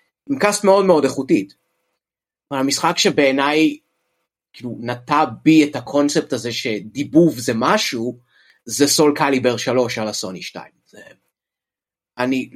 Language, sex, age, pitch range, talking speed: Hebrew, male, 30-49, 105-145 Hz, 120 wpm